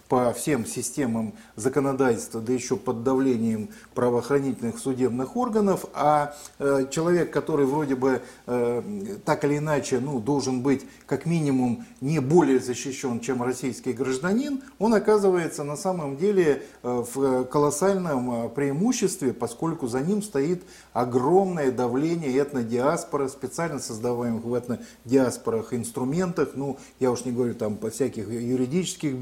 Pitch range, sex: 125-150 Hz, male